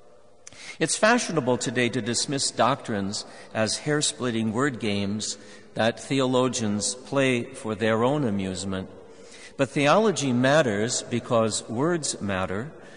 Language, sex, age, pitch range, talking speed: English, male, 50-69, 110-145 Hz, 105 wpm